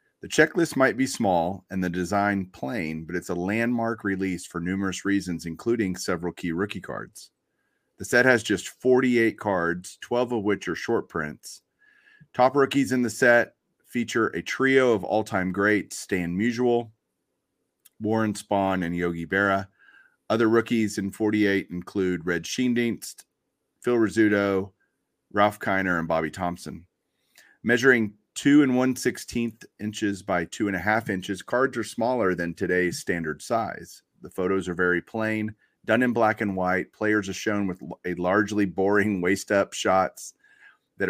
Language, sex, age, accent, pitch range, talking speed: English, male, 30-49, American, 90-115 Hz, 155 wpm